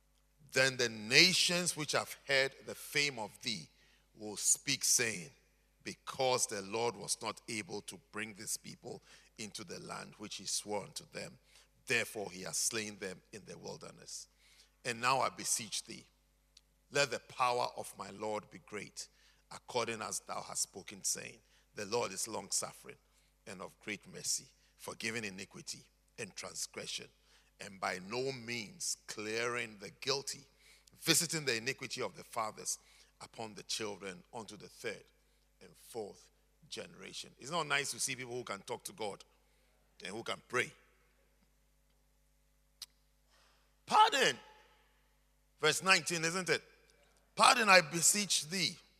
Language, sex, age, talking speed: English, male, 50-69, 140 wpm